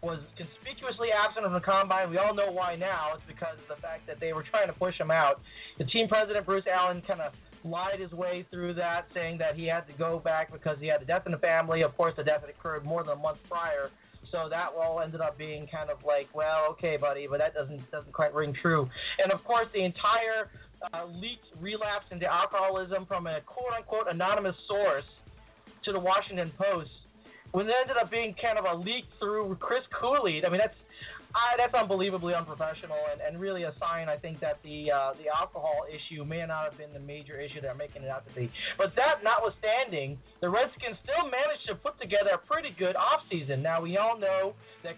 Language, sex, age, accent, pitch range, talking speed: English, male, 30-49, American, 160-215 Hz, 220 wpm